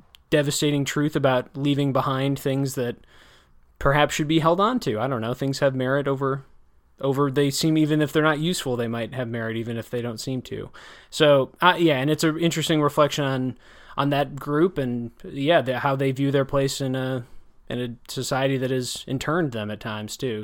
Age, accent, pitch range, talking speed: 20-39, American, 130-160 Hz, 205 wpm